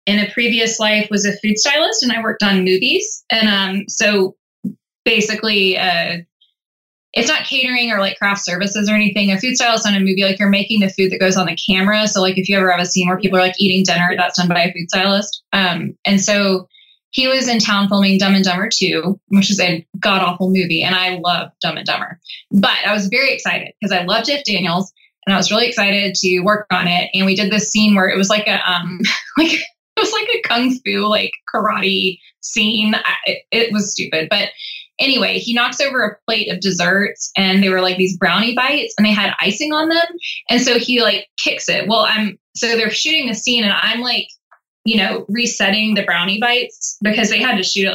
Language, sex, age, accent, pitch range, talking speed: English, female, 10-29, American, 190-225 Hz, 225 wpm